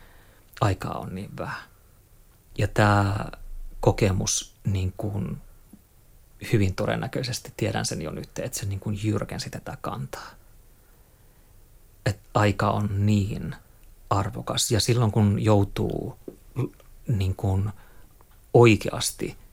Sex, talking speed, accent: male, 105 wpm, native